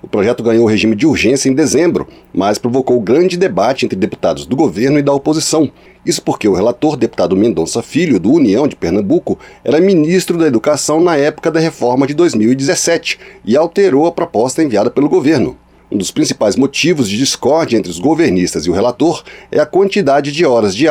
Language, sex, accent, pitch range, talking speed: Portuguese, male, Brazilian, 130-170 Hz, 185 wpm